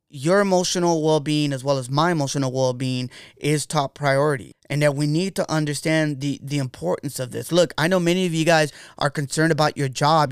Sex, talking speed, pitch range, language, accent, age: male, 205 wpm, 145-175 Hz, English, American, 20-39